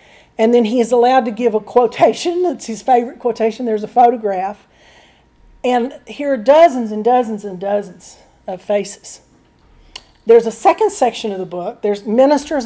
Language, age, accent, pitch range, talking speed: English, 40-59, American, 195-245 Hz, 165 wpm